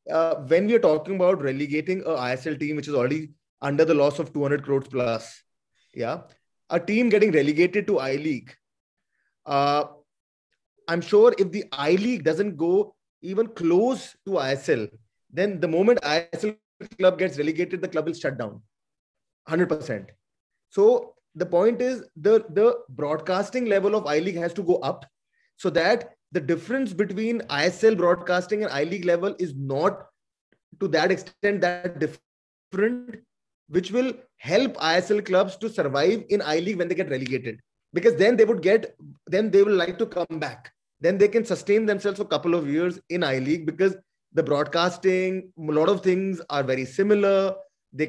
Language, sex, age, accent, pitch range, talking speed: English, male, 20-39, Indian, 155-210 Hz, 160 wpm